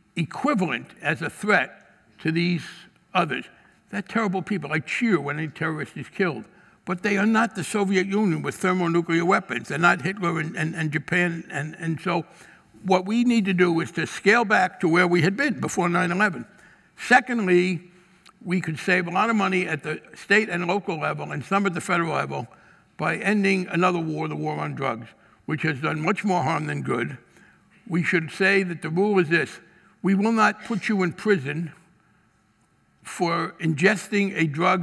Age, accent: 60-79, American